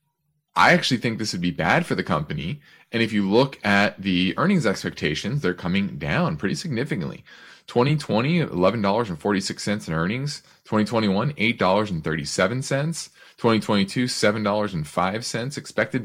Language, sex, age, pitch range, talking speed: English, male, 30-49, 90-135 Hz, 145 wpm